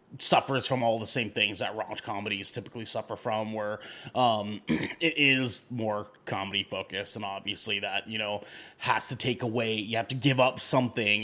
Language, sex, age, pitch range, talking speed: English, male, 30-49, 105-130 Hz, 180 wpm